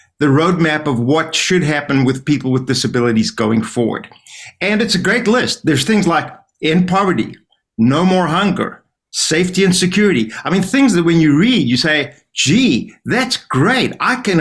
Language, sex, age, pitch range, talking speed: English, male, 50-69, 125-175 Hz, 175 wpm